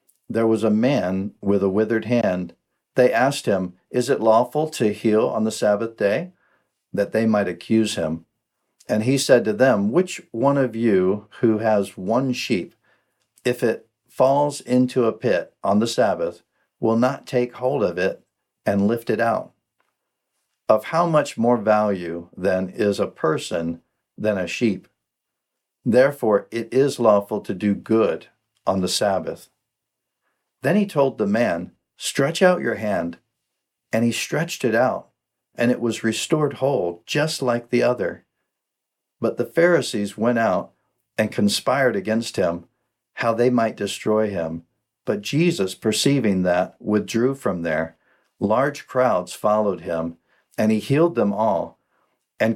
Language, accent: English, American